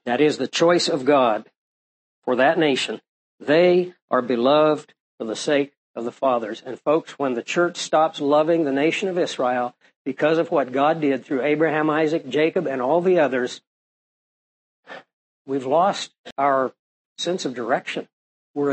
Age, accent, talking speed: 60-79, American, 155 wpm